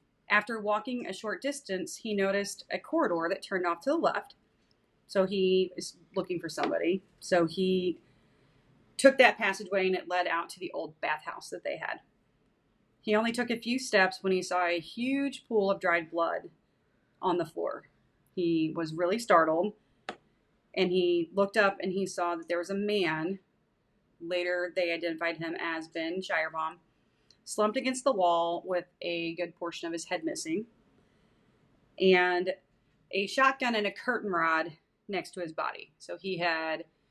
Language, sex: English, female